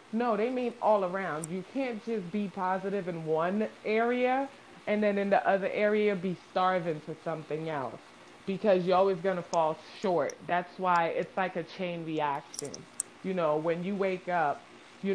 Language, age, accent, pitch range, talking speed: English, 20-39, American, 170-215 Hz, 180 wpm